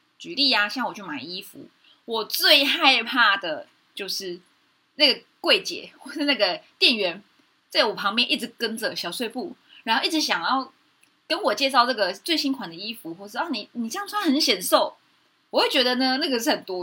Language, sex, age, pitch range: Chinese, female, 20-39, 210-305 Hz